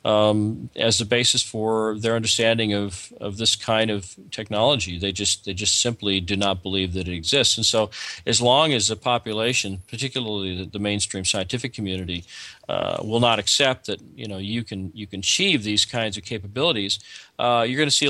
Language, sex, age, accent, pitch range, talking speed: English, male, 40-59, American, 100-120 Hz, 190 wpm